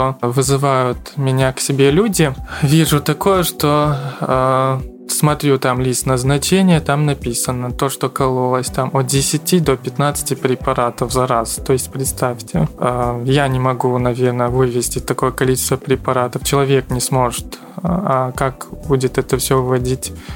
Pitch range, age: 130-145 Hz, 20-39